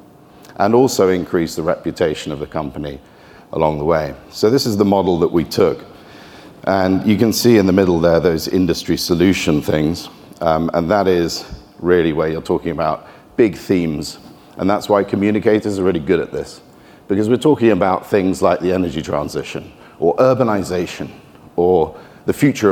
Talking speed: 170 wpm